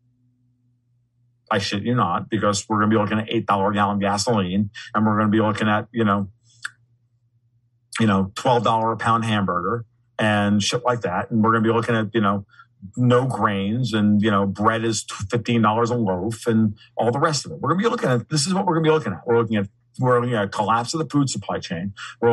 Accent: American